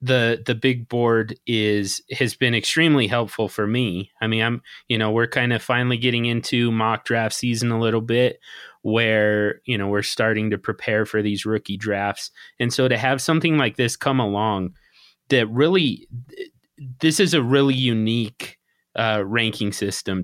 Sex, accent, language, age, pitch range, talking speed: male, American, English, 30-49, 105-130 Hz, 170 wpm